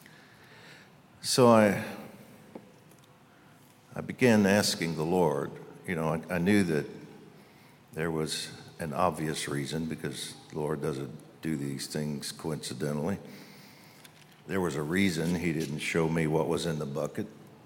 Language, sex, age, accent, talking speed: English, male, 60-79, American, 135 wpm